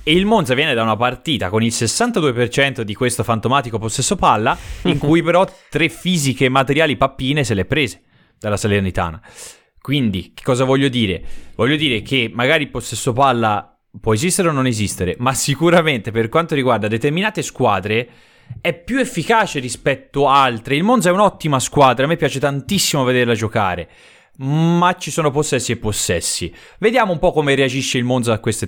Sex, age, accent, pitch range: male, 20-39, native, 110-150 Hz